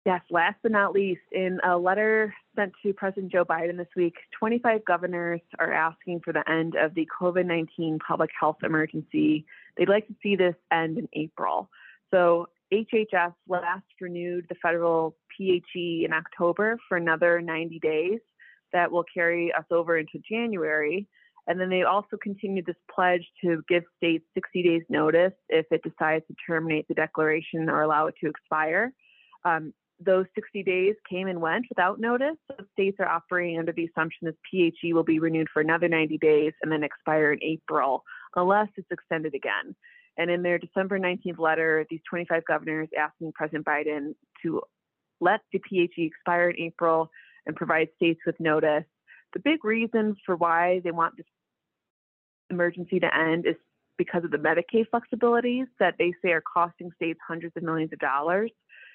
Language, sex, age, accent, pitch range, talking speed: English, female, 20-39, American, 160-190 Hz, 170 wpm